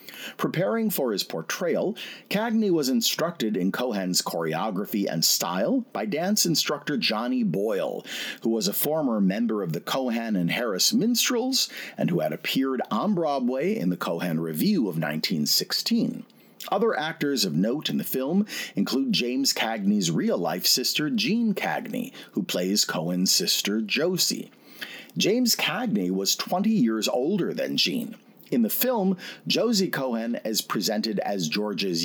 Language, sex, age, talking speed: English, male, 40-59, 145 wpm